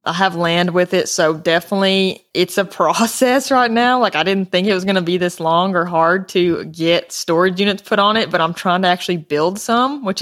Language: English